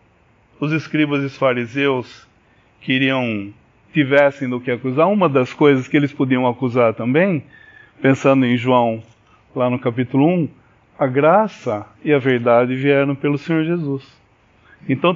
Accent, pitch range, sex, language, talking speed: Brazilian, 110-155 Hz, male, English, 140 wpm